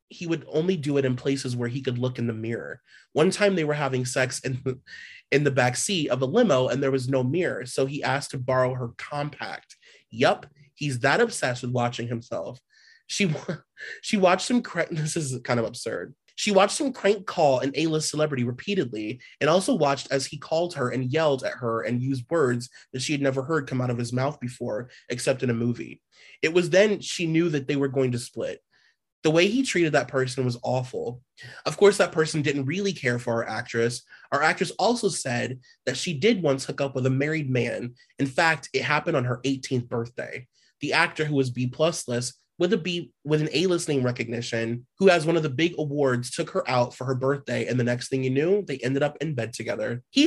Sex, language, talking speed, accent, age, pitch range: male, English, 220 wpm, American, 30-49, 125-165 Hz